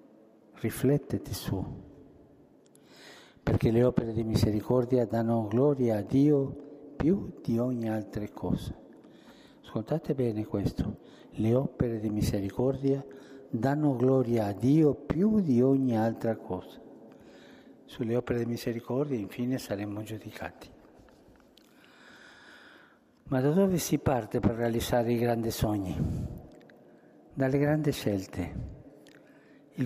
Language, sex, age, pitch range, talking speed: Italian, male, 60-79, 115-145 Hz, 105 wpm